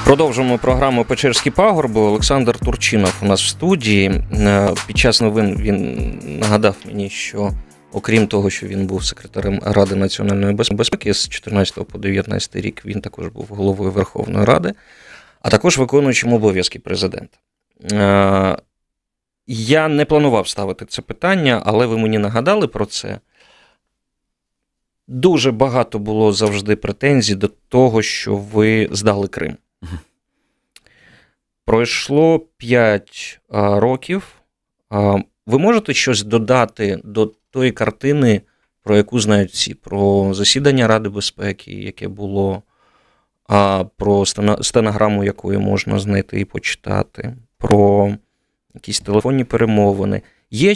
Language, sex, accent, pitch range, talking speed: Ukrainian, male, native, 100-125 Hz, 120 wpm